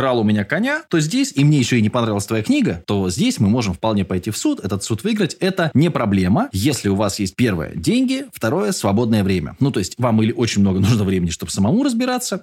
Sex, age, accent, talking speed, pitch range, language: male, 20-39, native, 230 wpm, 105-155 Hz, Russian